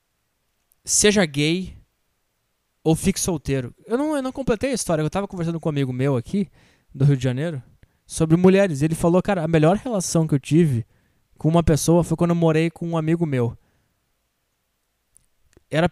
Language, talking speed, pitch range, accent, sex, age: English, 175 wpm, 135-195 Hz, Brazilian, male, 20-39